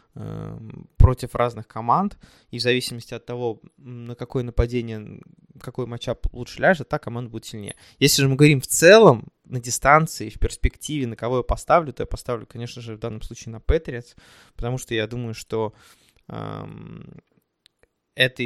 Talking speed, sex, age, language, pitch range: 160 wpm, male, 20-39, Russian, 110-130 Hz